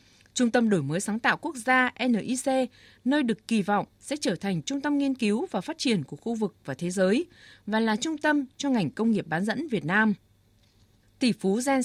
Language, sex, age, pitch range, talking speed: Vietnamese, female, 20-39, 195-255 Hz, 225 wpm